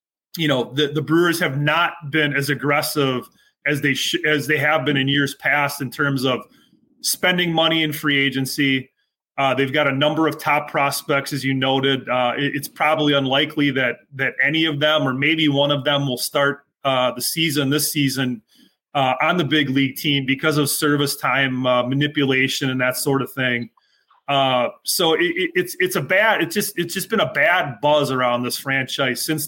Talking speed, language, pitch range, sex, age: 200 wpm, English, 135-155 Hz, male, 30-49